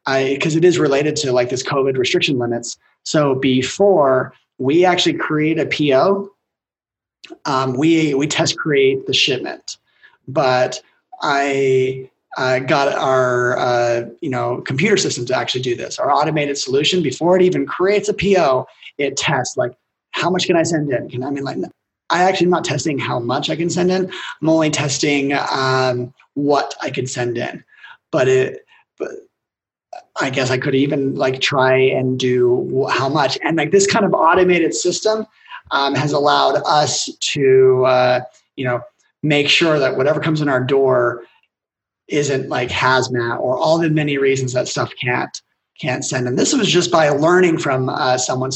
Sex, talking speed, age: male, 175 wpm, 30-49